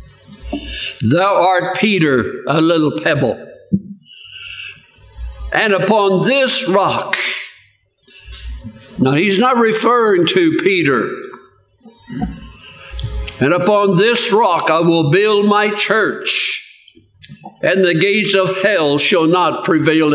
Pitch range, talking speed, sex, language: 170-225 Hz, 100 wpm, male, English